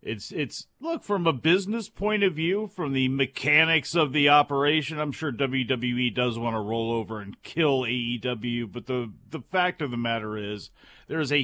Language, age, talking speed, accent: English, 40-59, 190 wpm, American